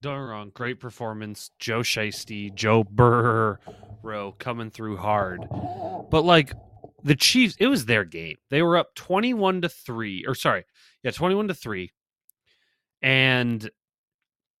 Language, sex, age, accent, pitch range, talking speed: English, male, 30-49, American, 110-150 Hz, 130 wpm